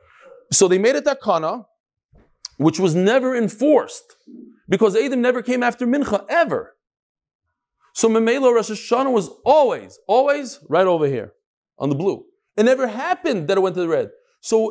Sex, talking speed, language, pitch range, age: male, 160 wpm, English, 170-255 Hz, 40-59